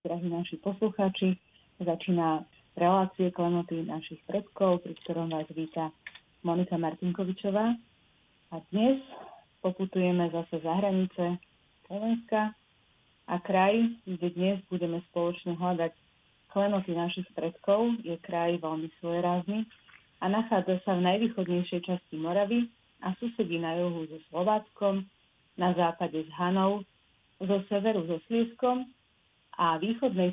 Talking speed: 115 wpm